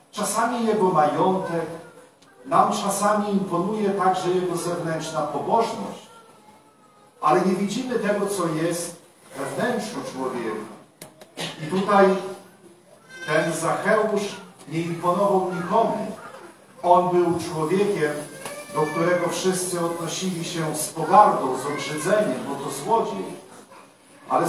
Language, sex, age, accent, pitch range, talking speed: Polish, male, 40-59, native, 165-210 Hz, 100 wpm